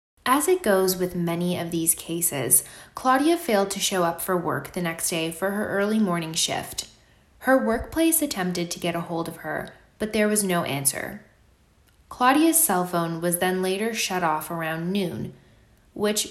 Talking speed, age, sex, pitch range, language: 175 wpm, 20-39, female, 170-215 Hz, English